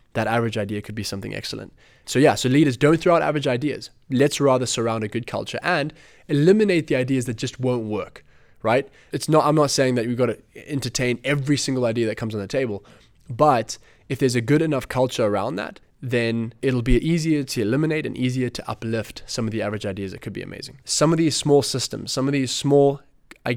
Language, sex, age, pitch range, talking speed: English, male, 20-39, 115-140 Hz, 225 wpm